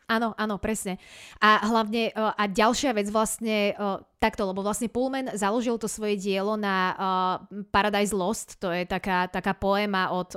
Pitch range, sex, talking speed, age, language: 185-220 Hz, female, 150 wpm, 20-39, Slovak